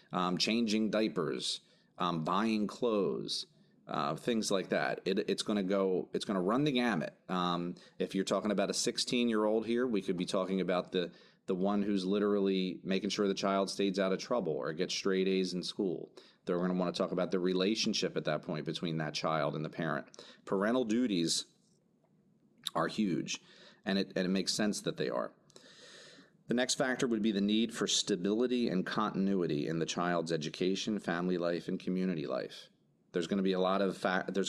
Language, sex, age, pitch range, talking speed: English, male, 40-59, 90-105 Hz, 195 wpm